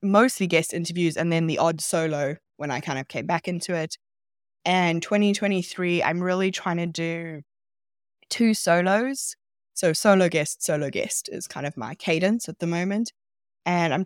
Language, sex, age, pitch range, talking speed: English, female, 20-39, 155-195 Hz, 170 wpm